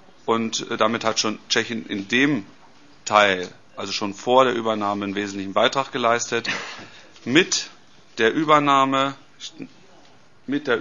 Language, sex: Czech, male